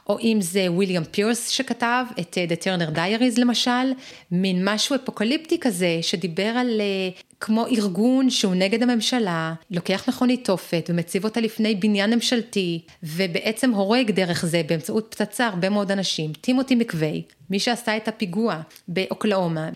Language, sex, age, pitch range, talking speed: Hebrew, female, 30-49, 175-235 Hz, 145 wpm